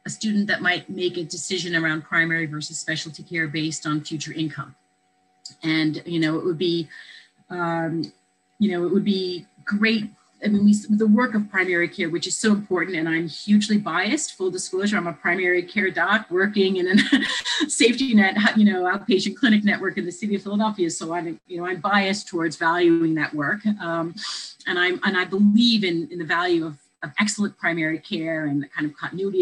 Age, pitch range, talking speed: 30-49, 160-205 Hz, 200 wpm